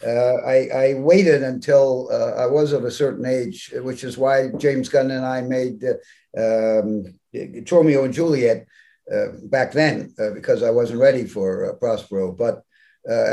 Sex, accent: male, American